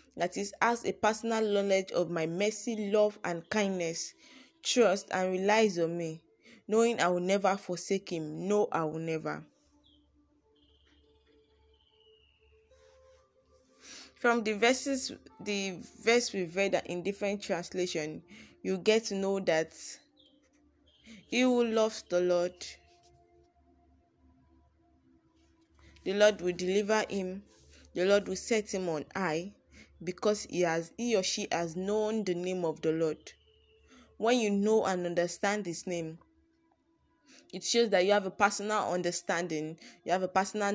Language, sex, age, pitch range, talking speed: English, female, 10-29, 170-220 Hz, 135 wpm